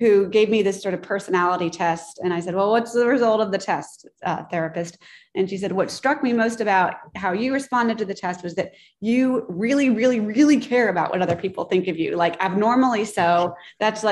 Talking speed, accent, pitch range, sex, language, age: 220 wpm, American, 180-215 Hz, female, English, 20-39